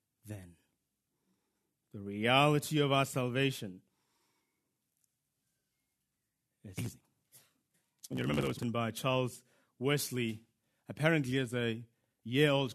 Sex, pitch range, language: male, 125-160 Hz, English